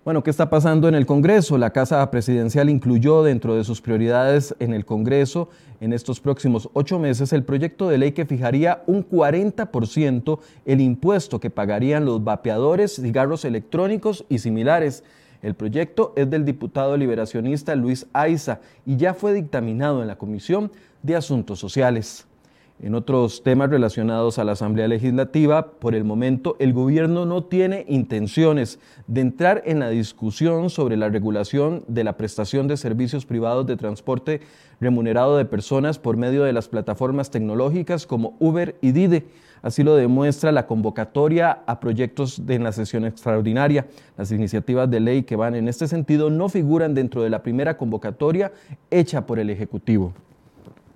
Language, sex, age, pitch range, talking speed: Spanish, male, 30-49, 115-155 Hz, 160 wpm